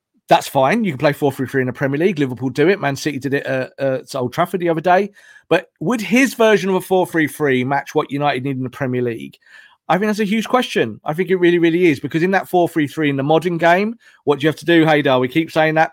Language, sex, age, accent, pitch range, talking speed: English, male, 40-59, British, 140-185 Hz, 270 wpm